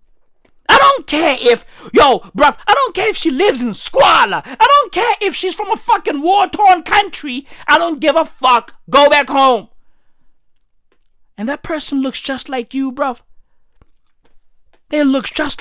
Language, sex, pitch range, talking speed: English, male, 215-300 Hz, 165 wpm